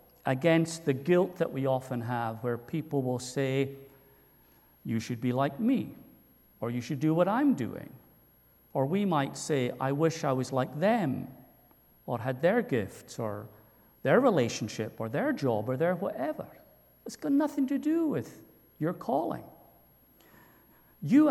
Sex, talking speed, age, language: male, 155 wpm, 50-69, English